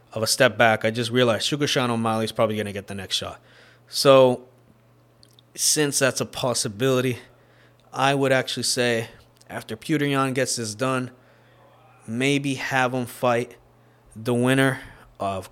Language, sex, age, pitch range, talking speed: English, male, 20-39, 110-140 Hz, 155 wpm